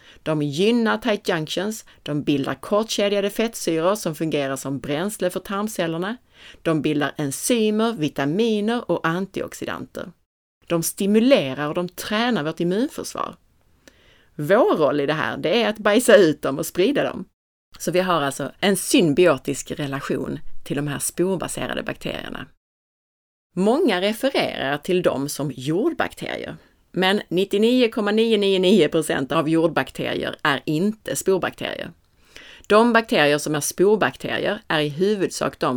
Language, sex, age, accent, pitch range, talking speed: Swedish, female, 30-49, native, 150-215 Hz, 125 wpm